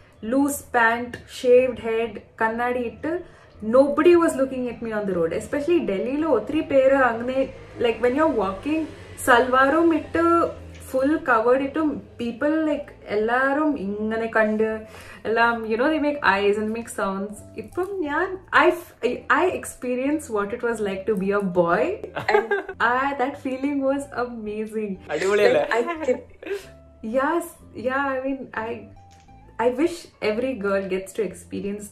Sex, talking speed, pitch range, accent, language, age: female, 150 wpm, 200-270 Hz, native, Malayalam, 20-39